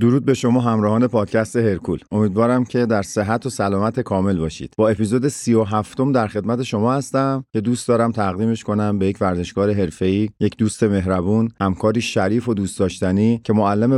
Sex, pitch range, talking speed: male, 100-120 Hz, 175 wpm